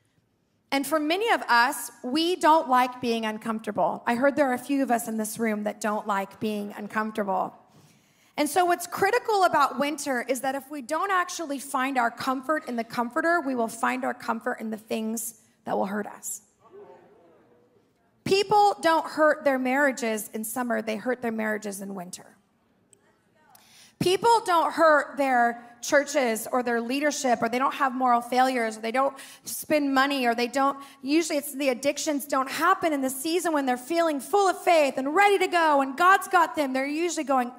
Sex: female